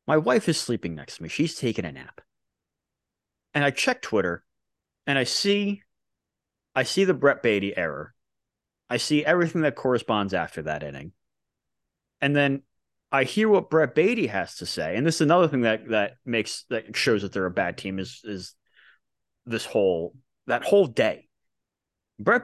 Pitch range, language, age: 120-190 Hz, English, 30-49